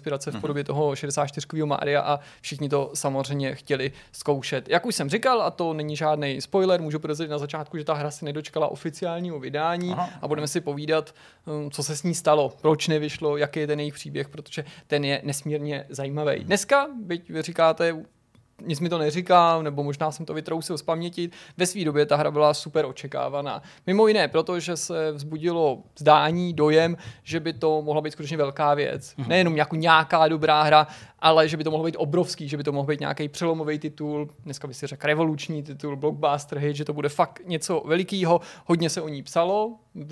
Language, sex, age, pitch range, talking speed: Czech, male, 20-39, 145-165 Hz, 195 wpm